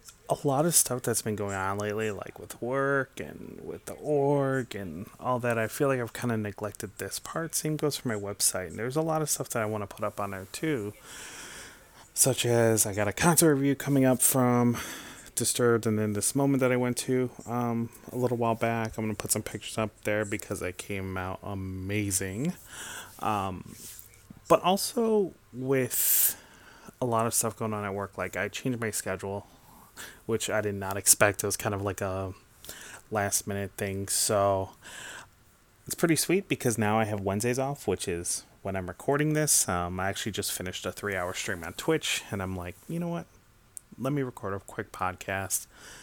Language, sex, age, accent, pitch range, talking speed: English, male, 30-49, American, 105-135 Hz, 200 wpm